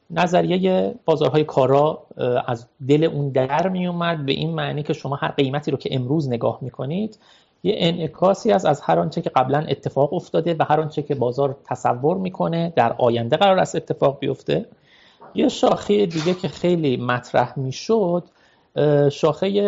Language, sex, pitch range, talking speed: Persian, male, 130-175 Hz, 150 wpm